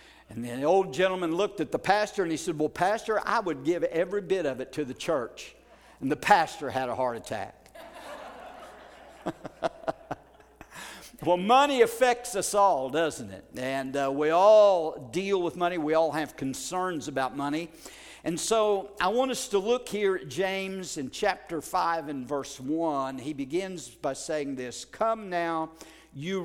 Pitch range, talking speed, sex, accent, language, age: 140-195 Hz, 170 wpm, male, American, English, 50-69